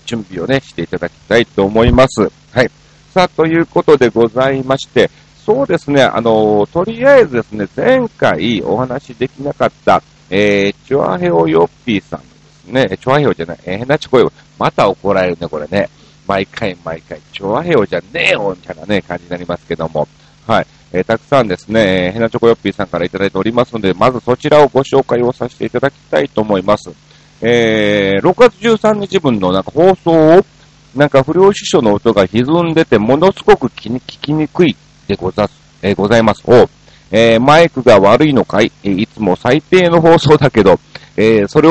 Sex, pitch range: male, 100-145 Hz